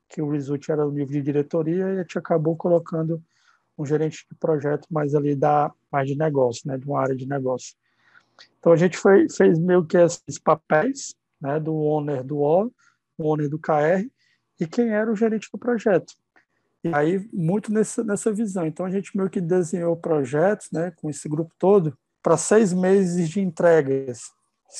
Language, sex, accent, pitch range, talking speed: Portuguese, male, Brazilian, 155-190 Hz, 185 wpm